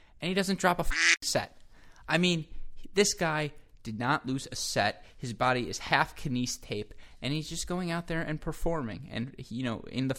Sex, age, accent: male, 20-39, American